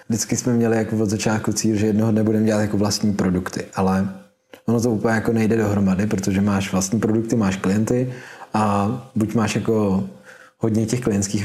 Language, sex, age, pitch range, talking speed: Czech, male, 20-39, 95-110 Hz, 185 wpm